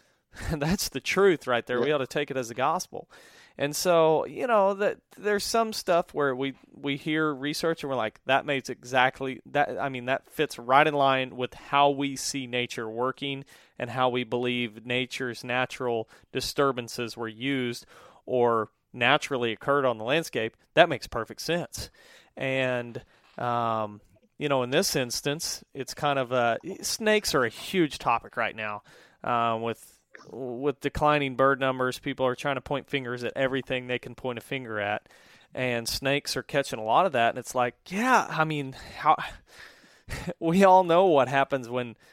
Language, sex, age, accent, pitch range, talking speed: English, male, 30-49, American, 125-150 Hz, 175 wpm